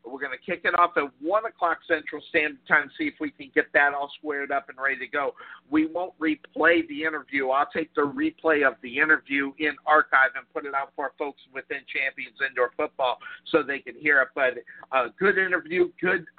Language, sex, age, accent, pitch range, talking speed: English, male, 50-69, American, 140-175 Hz, 215 wpm